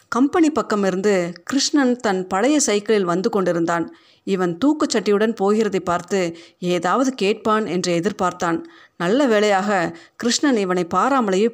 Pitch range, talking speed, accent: 180-235 Hz, 115 wpm, native